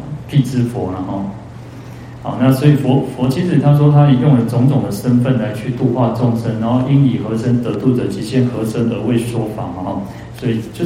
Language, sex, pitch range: Chinese, male, 110-130 Hz